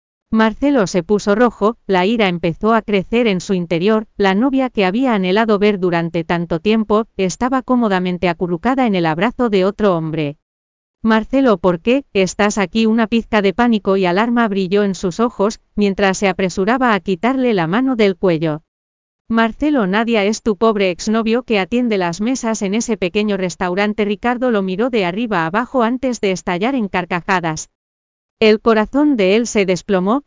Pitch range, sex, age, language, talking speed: 185-230 Hz, female, 40-59, English, 170 wpm